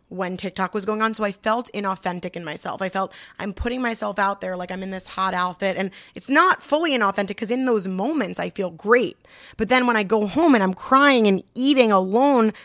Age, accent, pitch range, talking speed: 20-39, American, 185-215 Hz, 230 wpm